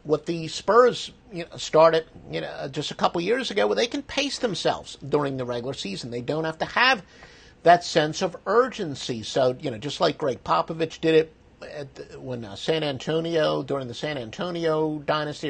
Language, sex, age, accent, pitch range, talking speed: English, male, 50-69, American, 140-175 Hz, 200 wpm